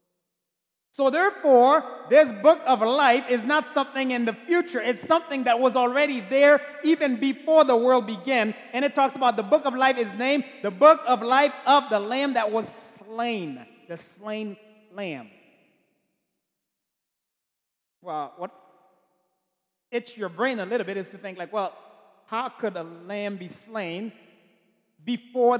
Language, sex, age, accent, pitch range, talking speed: English, male, 30-49, American, 205-290 Hz, 155 wpm